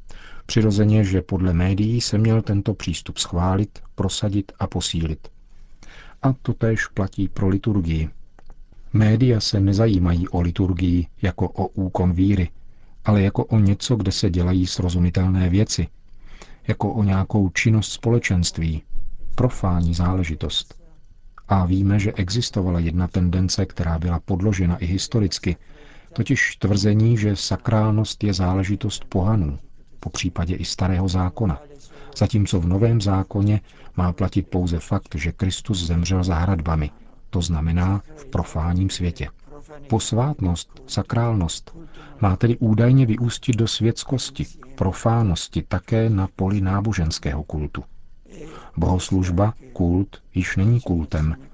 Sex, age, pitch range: male, 50-69, 90-110 Hz